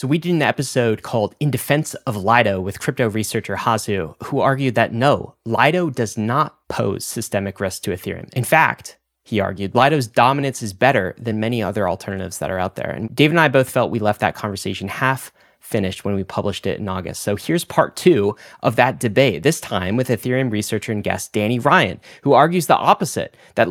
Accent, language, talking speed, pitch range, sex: American, English, 205 wpm, 105-130 Hz, male